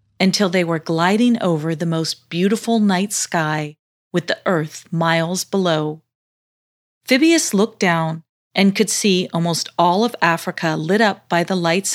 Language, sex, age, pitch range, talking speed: English, female, 40-59, 165-210 Hz, 150 wpm